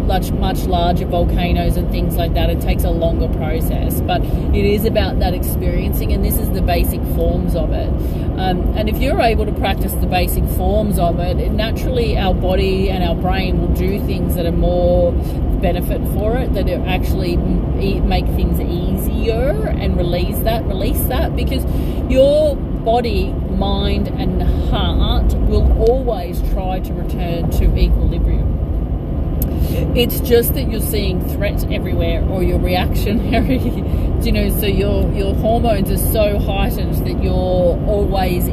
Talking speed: 160 wpm